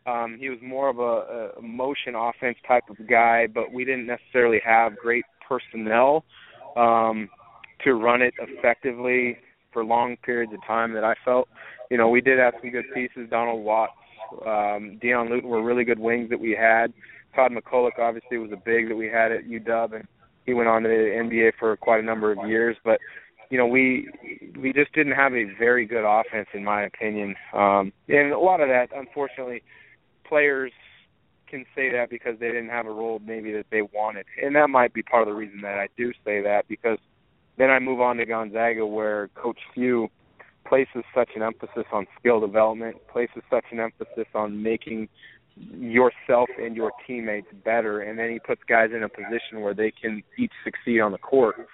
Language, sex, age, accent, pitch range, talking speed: English, male, 20-39, American, 110-125 Hz, 195 wpm